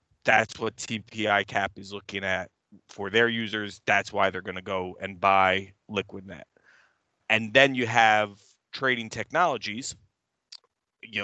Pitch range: 100-115 Hz